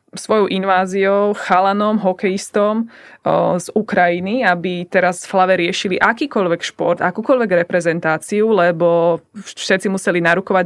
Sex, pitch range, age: female, 180-205 Hz, 20-39